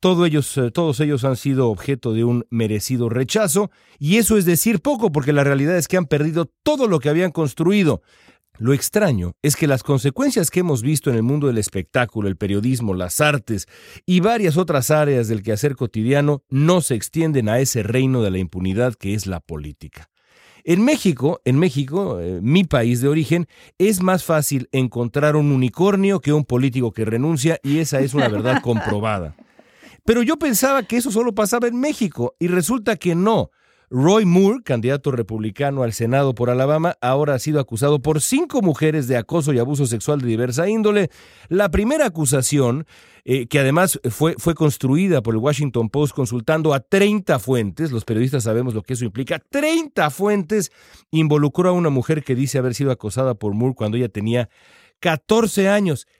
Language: Spanish